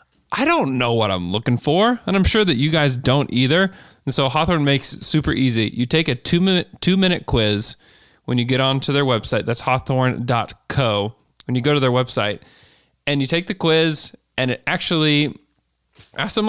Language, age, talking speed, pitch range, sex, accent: English, 20-39, 195 wpm, 120-155 Hz, male, American